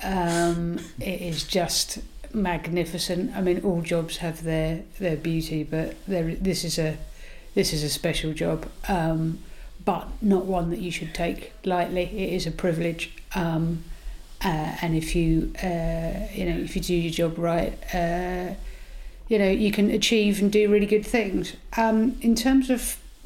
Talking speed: 170 wpm